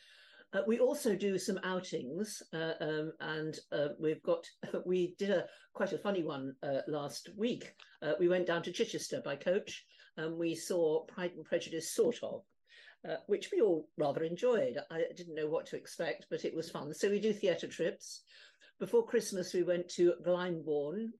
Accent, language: British, English